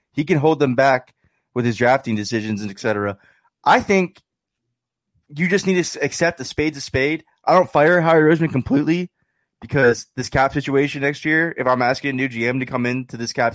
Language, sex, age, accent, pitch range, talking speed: English, male, 20-39, American, 115-140 Hz, 205 wpm